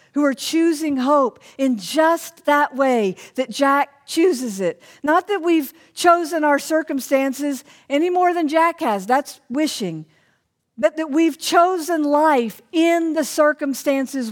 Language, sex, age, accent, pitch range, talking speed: English, female, 50-69, American, 235-315 Hz, 140 wpm